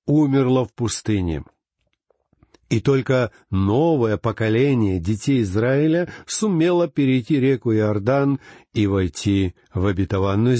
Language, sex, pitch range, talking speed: Russian, male, 115-165 Hz, 95 wpm